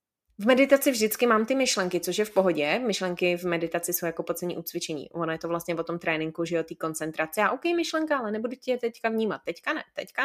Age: 20-39